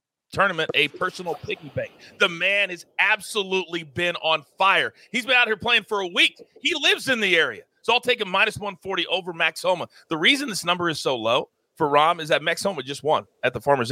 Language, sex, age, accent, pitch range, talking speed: English, male, 40-59, American, 150-220 Hz, 225 wpm